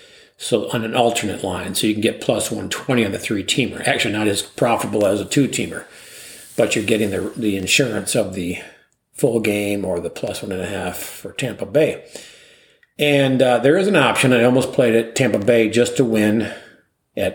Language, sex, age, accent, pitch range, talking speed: English, male, 50-69, American, 105-135 Hz, 195 wpm